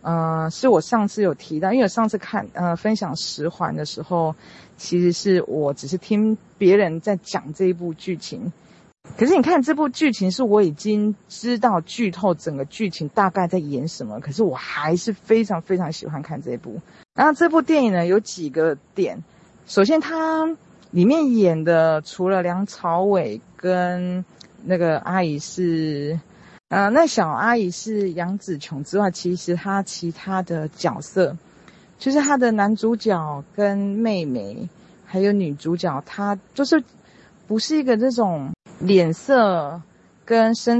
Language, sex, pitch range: Chinese, female, 170-225 Hz